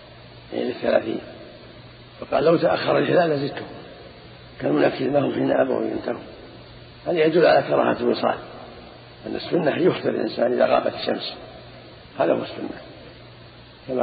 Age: 50-69